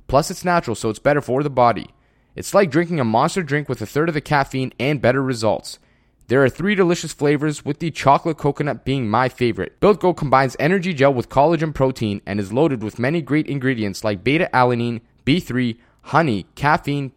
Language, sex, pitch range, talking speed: English, male, 120-155 Hz, 200 wpm